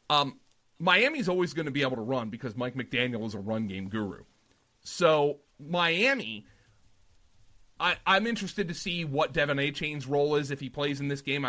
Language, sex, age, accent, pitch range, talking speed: English, male, 30-49, American, 125-170 Hz, 185 wpm